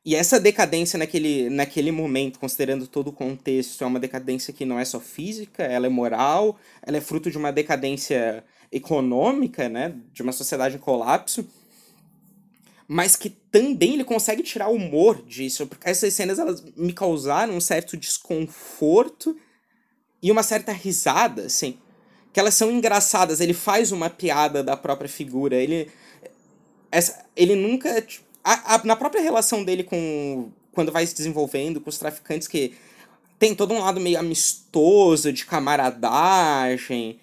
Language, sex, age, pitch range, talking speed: Portuguese, male, 20-39, 140-200 Hz, 155 wpm